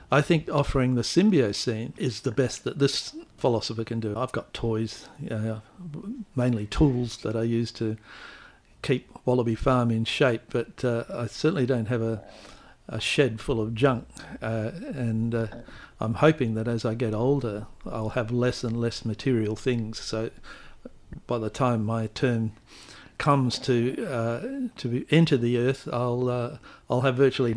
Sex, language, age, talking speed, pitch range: male, English, 50-69, 165 wpm, 115-130 Hz